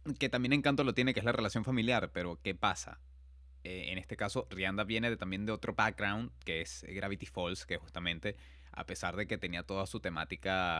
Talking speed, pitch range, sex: 210 wpm, 85-110 Hz, male